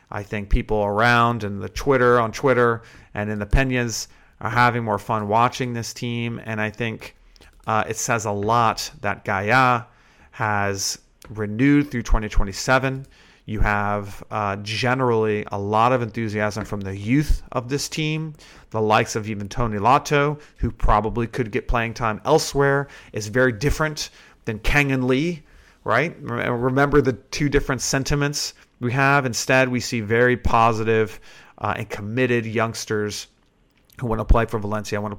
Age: 40-59